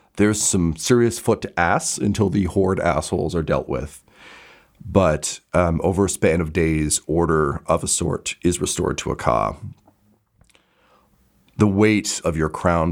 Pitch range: 70-90 Hz